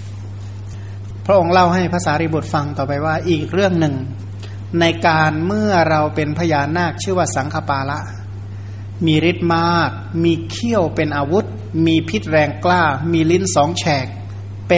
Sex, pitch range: male, 100-160 Hz